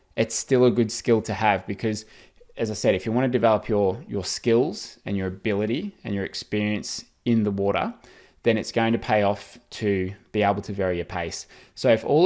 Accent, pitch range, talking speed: Australian, 100-115 Hz, 215 wpm